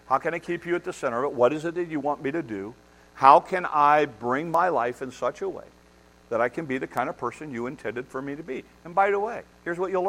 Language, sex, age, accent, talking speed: English, male, 50-69, American, 295 wpm